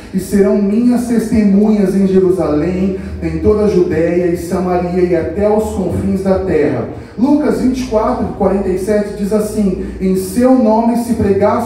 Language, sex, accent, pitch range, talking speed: Portuguese, male, Brazilian, 180-230 Hz, 145 wpm